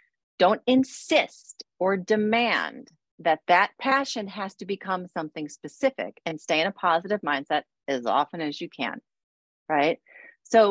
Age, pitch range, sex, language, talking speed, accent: 40-59, 170-230 Hz, female, English, 140 wpm, American